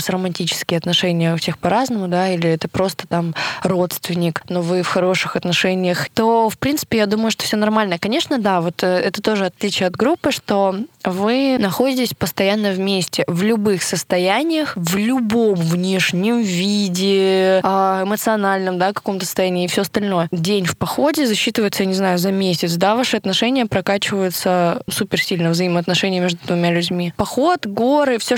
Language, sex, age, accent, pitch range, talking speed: Russian, female, 20-39, native, 180-210 Hz, 155 wpm